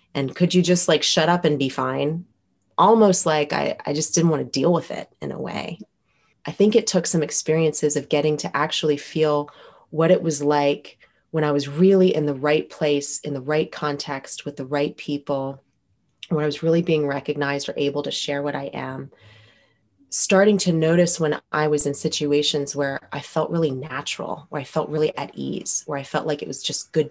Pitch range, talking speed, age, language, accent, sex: 140-155 Hz, 210 wpm, 20-39, English, American, female